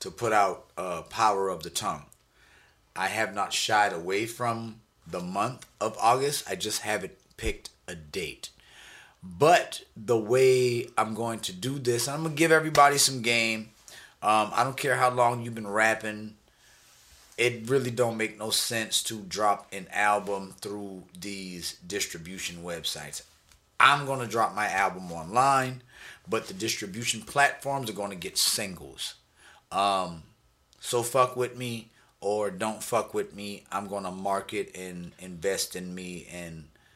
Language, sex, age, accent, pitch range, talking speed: English, male, 30-49, American, 90-115 Hz, 150 wpm